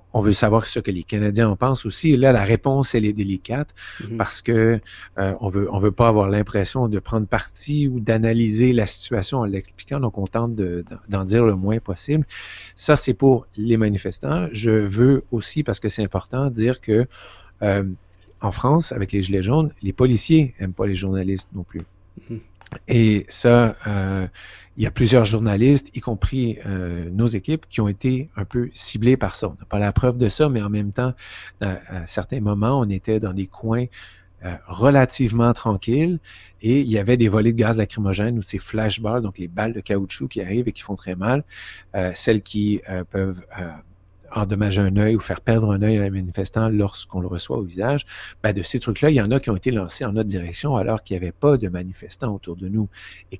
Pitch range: 95-120 Hz